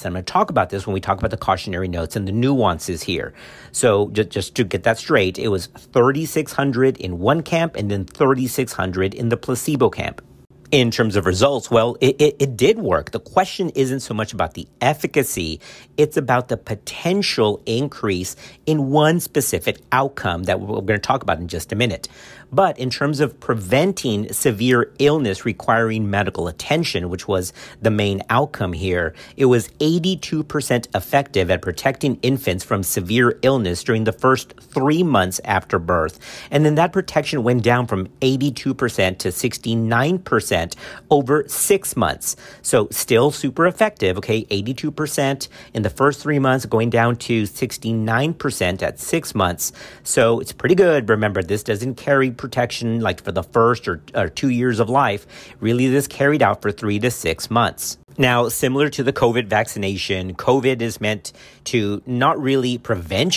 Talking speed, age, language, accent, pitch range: 170 wpm, 50-69, English, American, 105-140 Hz